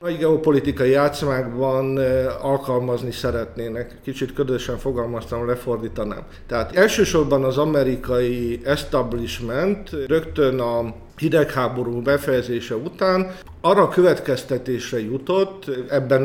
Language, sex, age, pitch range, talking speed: Hungarian, male, 50-69, 125-145 Hz, 85 wpm